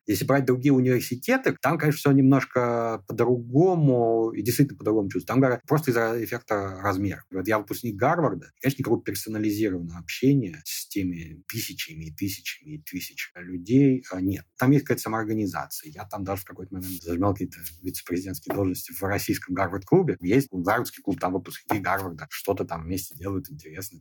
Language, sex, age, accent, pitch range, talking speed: Russian, male, 30-49, native, 95-130 Hz, 160 wpm